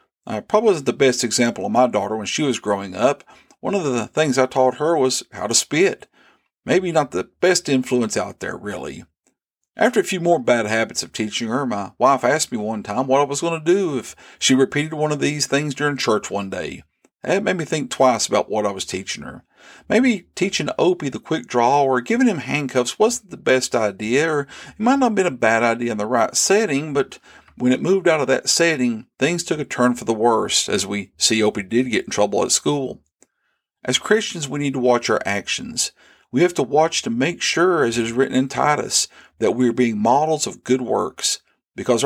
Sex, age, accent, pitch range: male, 50-69, American, 125-175 Hz